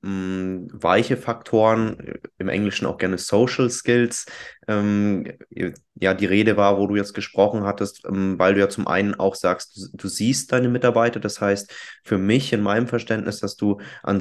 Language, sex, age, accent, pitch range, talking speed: German, male, 20-39, German, 95-105 Hz, 160 wpm